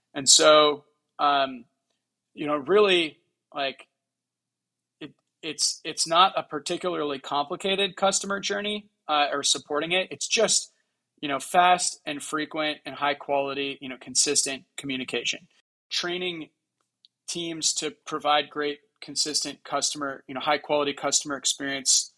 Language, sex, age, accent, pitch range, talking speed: English, male, 30-49, American, 140-155 Hz, 125 wpm